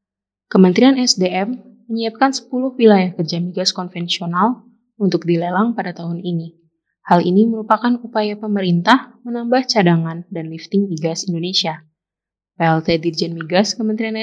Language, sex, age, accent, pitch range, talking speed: Indonesian, female, 20-39, native, 175-230 Hz, 120 wpm